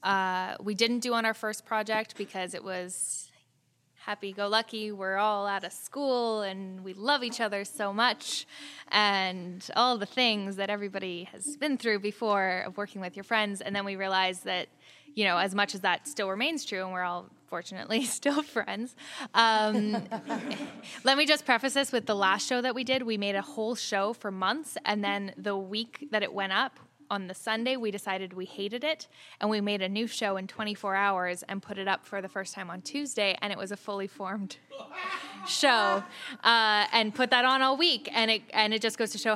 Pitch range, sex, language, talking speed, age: 195-240 Hz, female, English, 205 wpm, 10-29